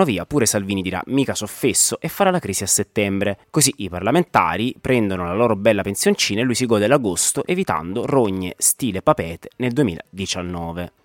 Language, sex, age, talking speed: Italian, male, 30-49, 170 wpm